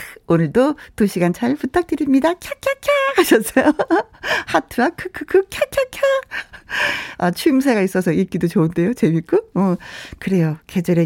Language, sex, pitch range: Korean, female, 190-320 Hz